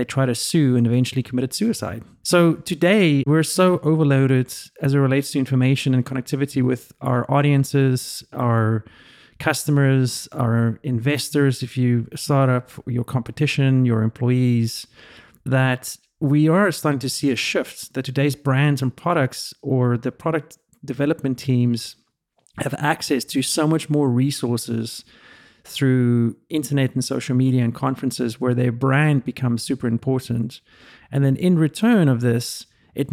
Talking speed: 145 wpm